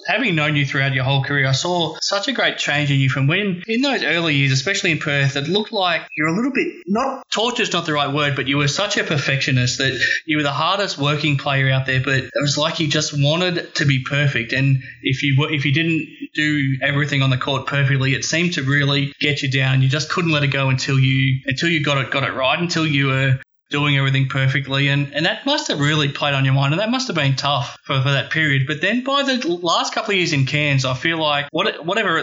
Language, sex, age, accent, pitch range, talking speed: English, male, 20-39, Australian, 135-160 Hz, 255 wpm